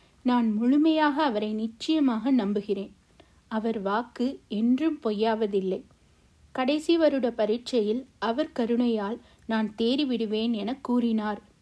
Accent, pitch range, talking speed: native, 220-270 Hz, 95 wpm